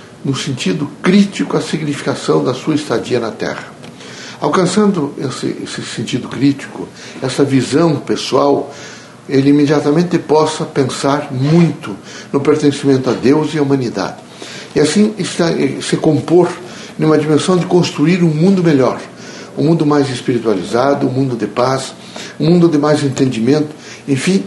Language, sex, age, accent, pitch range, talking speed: Portuguese, male, 60-79, Brazilian, 140-175 Hz, 135 wpm